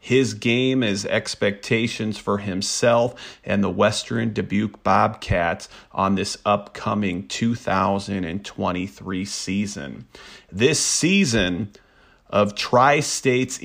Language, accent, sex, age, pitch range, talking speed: English, American, male, 40-59, 105-135 Hz, 90 wpm